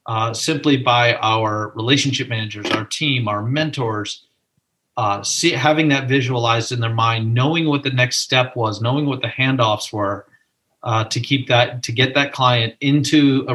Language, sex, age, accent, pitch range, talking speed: English, male, 40-59, American, 115-145 Hz, 175 wpm